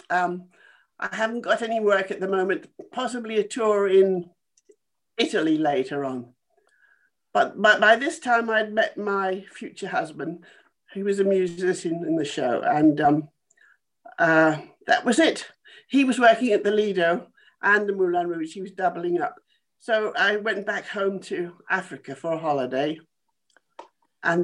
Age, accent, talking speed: 50-69, British, 160 wpm